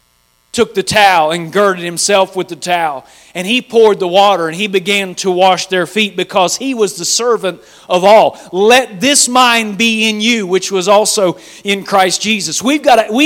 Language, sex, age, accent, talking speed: English, male, 40-59, American, 200 wpm